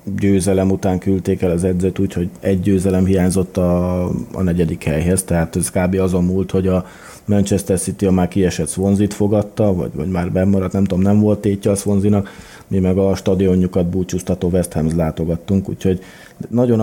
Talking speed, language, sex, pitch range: 170 wpm, Hungarian, male, 85-100 Hz